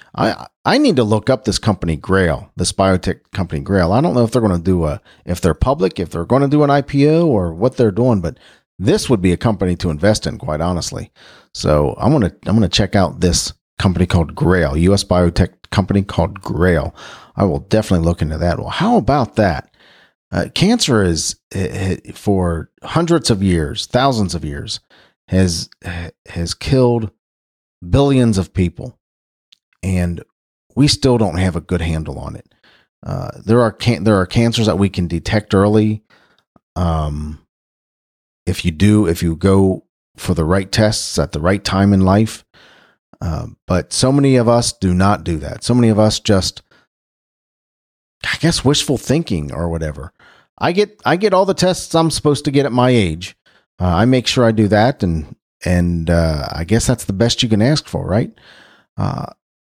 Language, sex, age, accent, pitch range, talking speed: English, male, 40-59, American, 85-115 Hz, 185 wpm